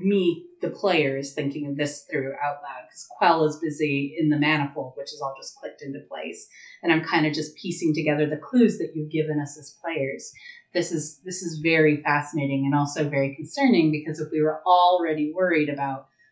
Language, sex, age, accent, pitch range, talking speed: English, female, 30-49, American, 145-170 Hz, 200 wpm